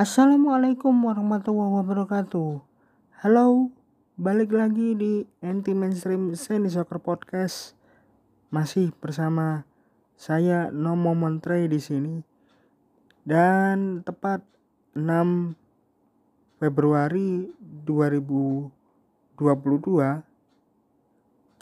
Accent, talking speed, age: native, 65 wpm, 20-39